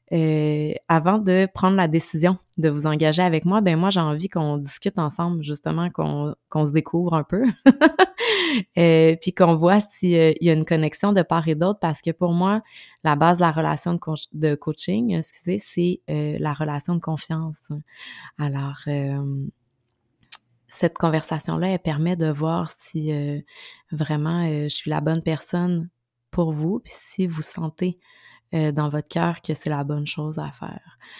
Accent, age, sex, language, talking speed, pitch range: Canadian, 20-39, female, French, 180 wpm, 150-175 Hz